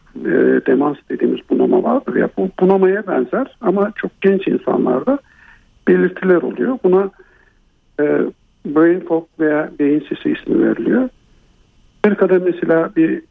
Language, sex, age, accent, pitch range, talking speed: Turkish, male, 60-79, native, 160-245 Hz, 120 wpm